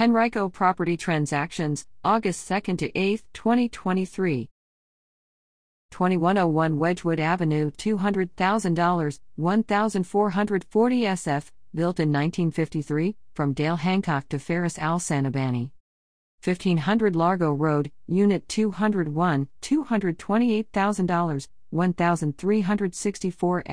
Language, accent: English, American